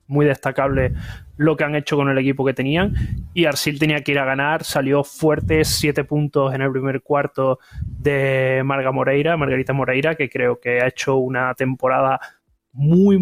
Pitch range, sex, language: 130-150 Hz, male, Spanish